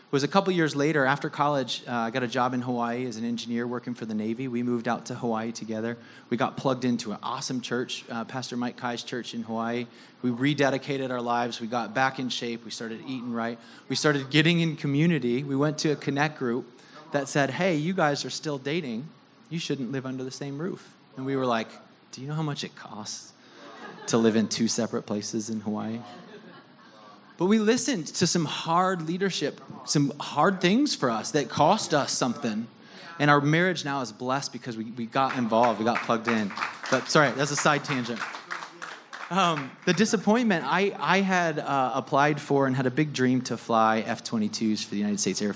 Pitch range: 115-150 Hz